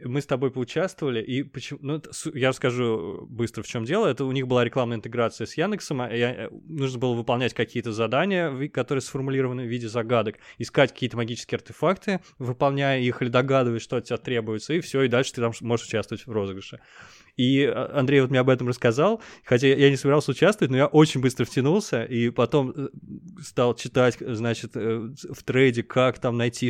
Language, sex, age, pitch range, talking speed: Russian, male, 20-39, 115-140 Hz, 180 wpm